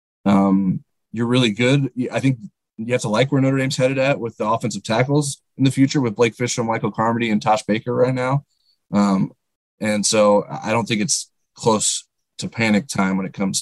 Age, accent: 20-39, American